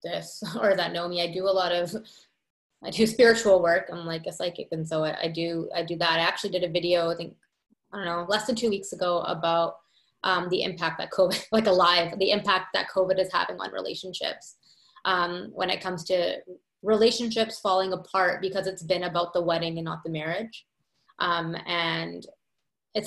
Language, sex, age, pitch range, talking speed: English, female, 20-39, 175-220 Hz, 205 wpm